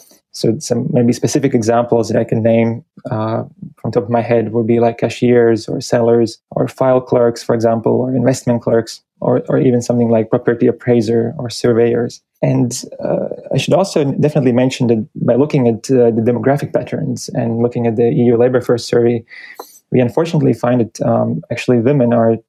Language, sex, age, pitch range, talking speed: English, male, 20-39, 115-125 Hz, 185 wpm